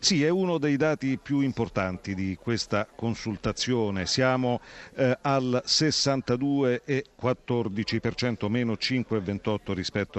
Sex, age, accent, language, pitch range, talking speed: male, 50-69, native, Italian, 100-130 Hz, 100 wpm